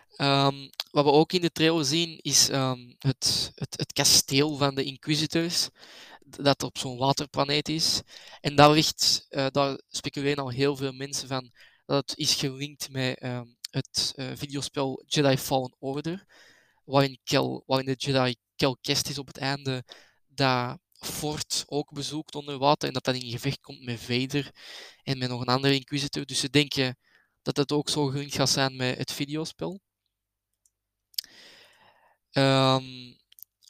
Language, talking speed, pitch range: Dutch, 155 wpm, 130-145 Hz